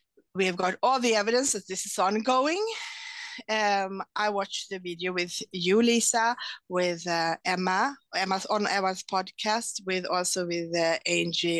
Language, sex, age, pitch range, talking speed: English, female, 20-39, 190-255 Hz, 155 wpm